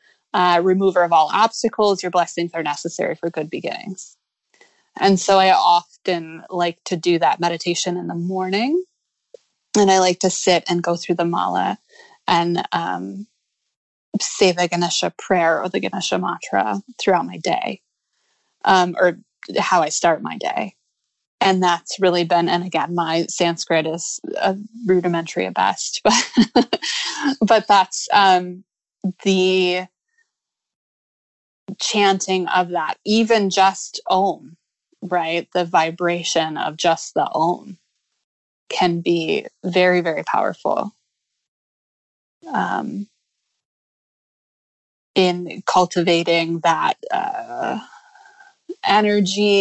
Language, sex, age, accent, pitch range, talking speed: English, female, 20-39, American, 175-205 Hz, 115 wpm